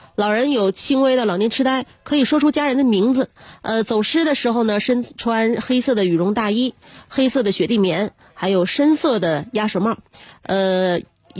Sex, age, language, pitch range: female, 30-49, Chinese, 185-235 Hz